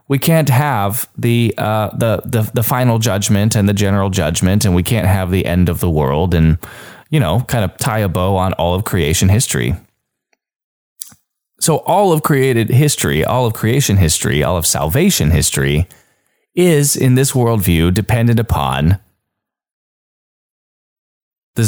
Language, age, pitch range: English, 20-39, 95-125 Hz